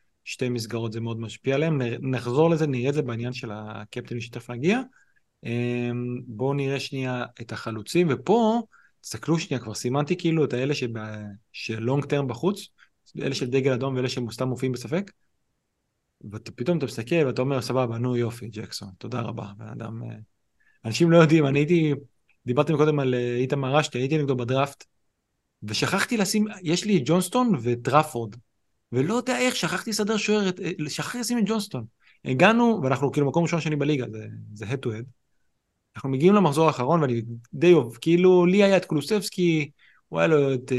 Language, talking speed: Hebrew, 160 wpm